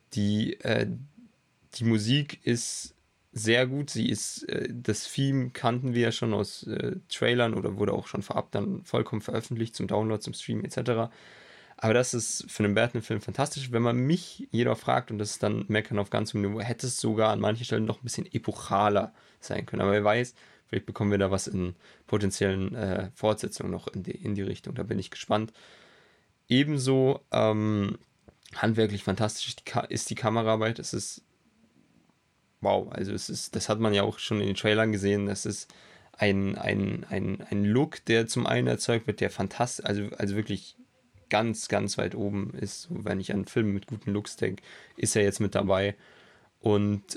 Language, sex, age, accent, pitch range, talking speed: German, male, 20-39, German, 105-120 Hz, 185 wpm